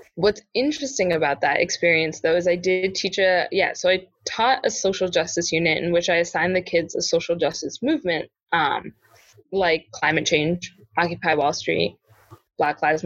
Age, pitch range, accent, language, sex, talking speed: 20-39, 160-210 Hz, American, English, female, 175 wpm